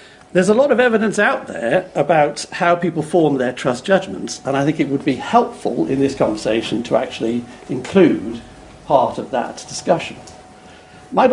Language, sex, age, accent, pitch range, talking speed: English, male, 60-79, British, 125-160 Hz, 175 wpm